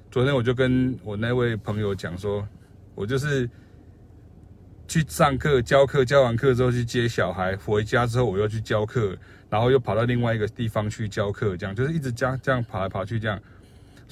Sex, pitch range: male, 100-130 Hz